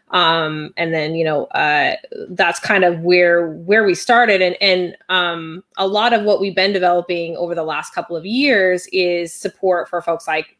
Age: 20-39